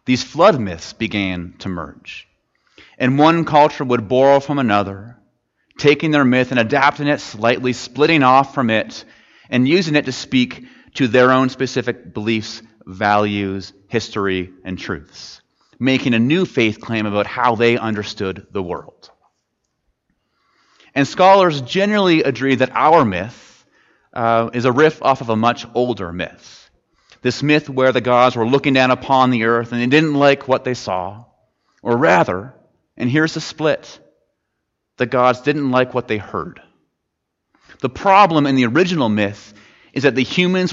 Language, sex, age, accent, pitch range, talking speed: English, male, 30-49, American, 115-140 Hz, 160 wpm